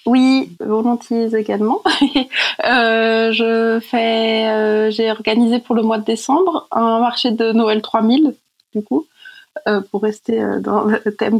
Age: 20-39